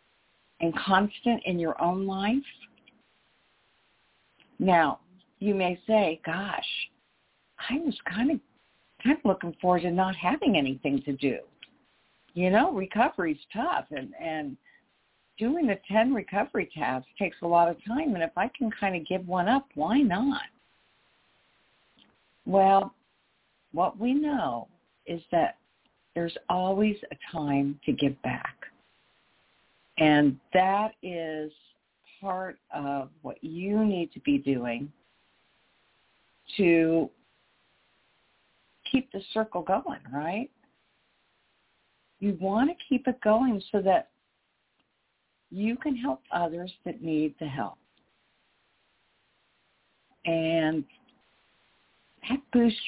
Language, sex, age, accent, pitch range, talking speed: English, female, 50-69, American, 160-230 Hz, 115 wpm